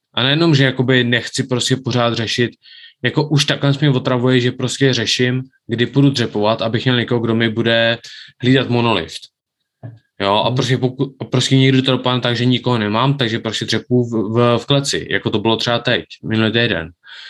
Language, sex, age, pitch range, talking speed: Czech, male, 20-39, 115-130 Hz, 170 wpm